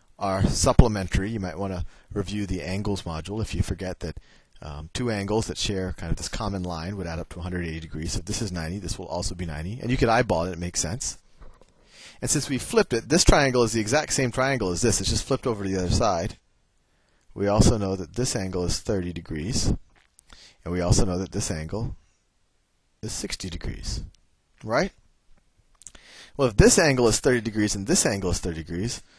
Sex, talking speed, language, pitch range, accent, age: male, 210 wpm, English, 90-115 Hz, American, 30-49